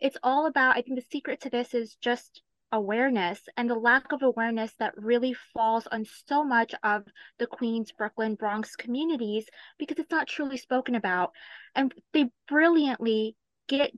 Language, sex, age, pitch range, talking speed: English, female, 20-39, 220-270 Hz, 170 wpm